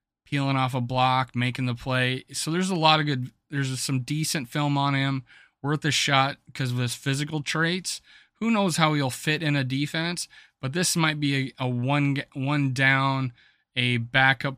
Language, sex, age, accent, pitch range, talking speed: English, male, 30-49, American, 130-145 Hz, 190 wpm